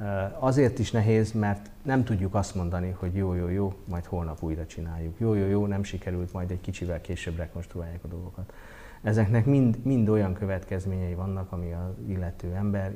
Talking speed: 175 wpm